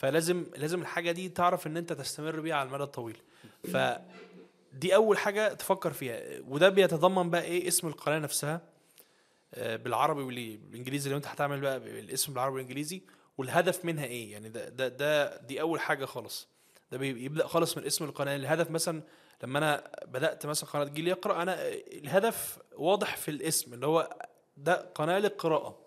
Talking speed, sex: 160 wpm, male